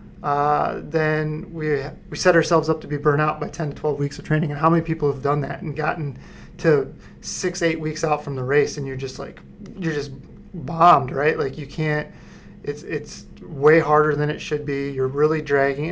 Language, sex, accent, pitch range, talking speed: English, male, American, 145-165 Hz, 215 wpm